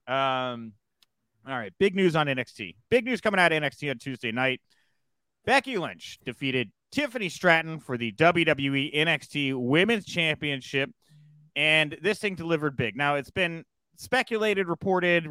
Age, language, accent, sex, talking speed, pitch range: 30-49, English, American, male, 145 wpm, 130-180 Hz